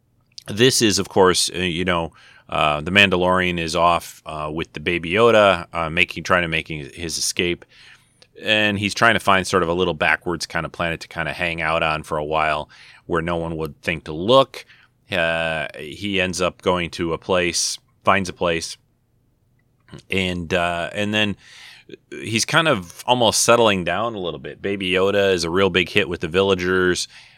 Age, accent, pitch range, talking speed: 30-49, American, 80-95 Hz, 190 wpm